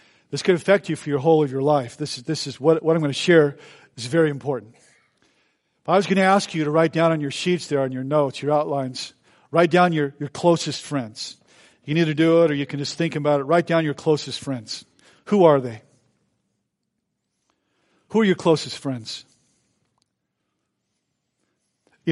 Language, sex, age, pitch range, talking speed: English, male, 50-69, 145-195 Hz, 200 wpm